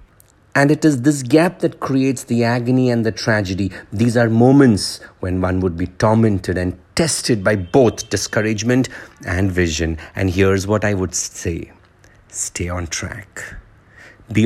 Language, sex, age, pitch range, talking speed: English, male, 50-69, 95-115 Hz, 155 wpm